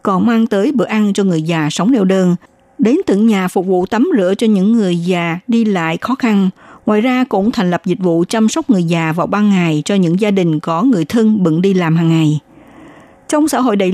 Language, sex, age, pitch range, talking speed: Vietnamese, female, 60-79, 175-230 Hz, 240 wpm